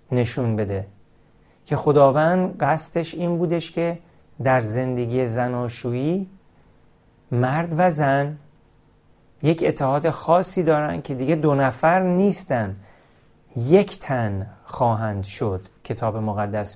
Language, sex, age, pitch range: Persian, male, 40-59, 120-155 Hz